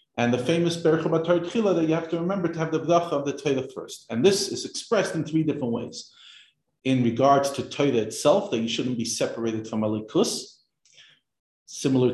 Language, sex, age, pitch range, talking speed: English, male, 40-59, 120-160 Hz, 195 wpm